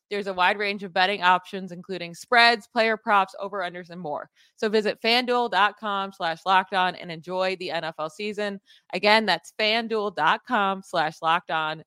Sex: female